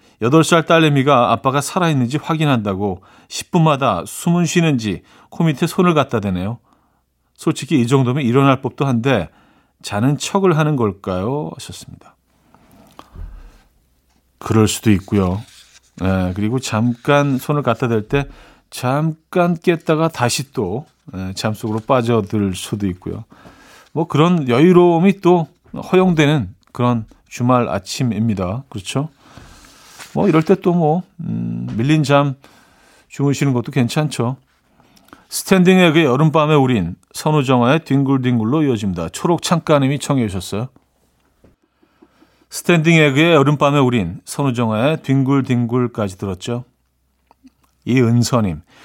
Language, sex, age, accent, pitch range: Korean, male, 40-59, native, 110-155 Hz